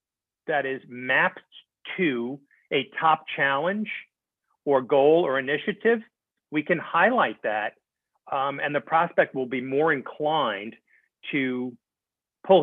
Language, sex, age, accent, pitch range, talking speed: English, male, 40-59, American, 125-165 Hz, 120 wpm